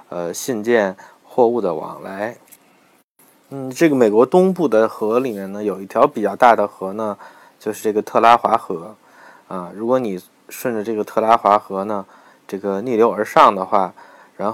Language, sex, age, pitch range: Chinese, male, 20-39, 100-130 Hz